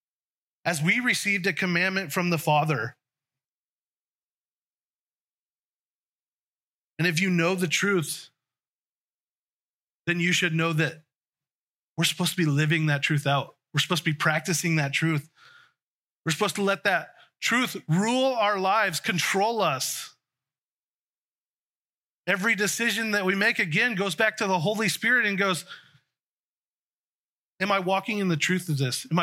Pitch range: 150-190 Hz